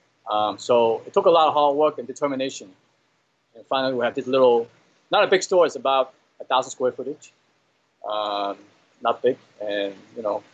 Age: 20-39